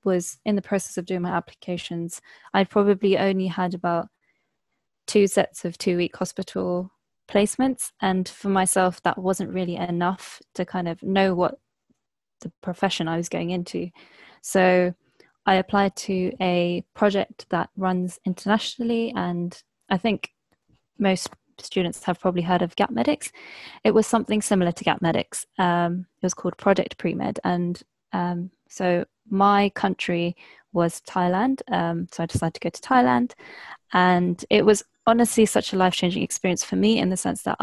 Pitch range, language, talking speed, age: 175-200 Hz, English, 160 wpm, 10-29